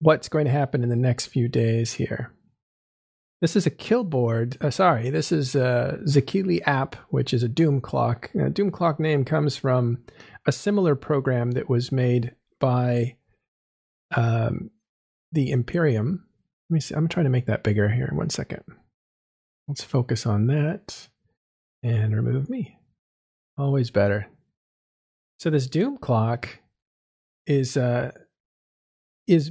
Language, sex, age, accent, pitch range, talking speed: English, male, 40-59, American, 120-155 Hz, 140 wpm